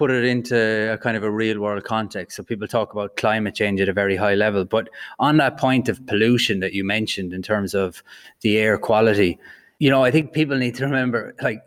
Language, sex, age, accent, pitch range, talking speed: English, male, 20-39, Irish, 100-120 Hz, 230 wpm